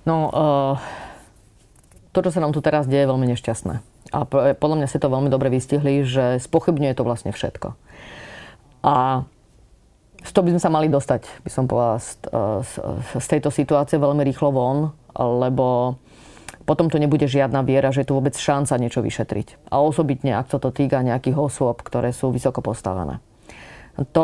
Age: 30-49